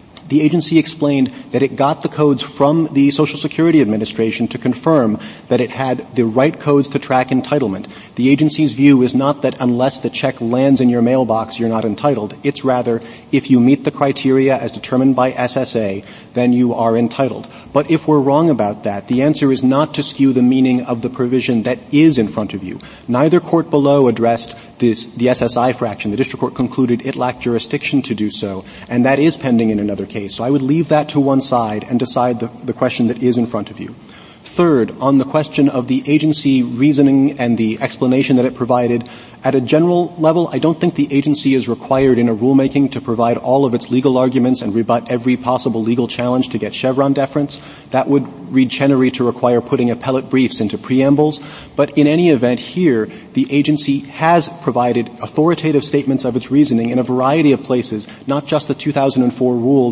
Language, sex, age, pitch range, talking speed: English, male, 30-49, 120-145 Hz, 200 wpm